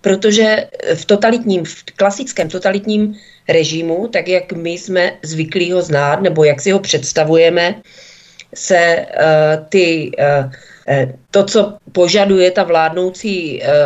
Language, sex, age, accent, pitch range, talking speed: Czech, female, 40-59, native, 175-200 Hz, 105 wpm